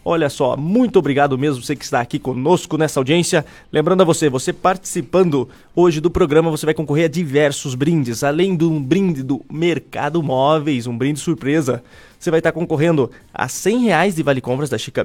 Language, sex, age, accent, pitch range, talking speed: Portuguese, male, 20-39, Brazilian, 130-170 Hz, 195 wpm